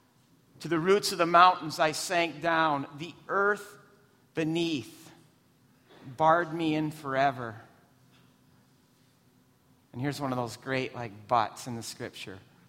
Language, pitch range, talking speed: English, 125-150 Hz, 130 wpm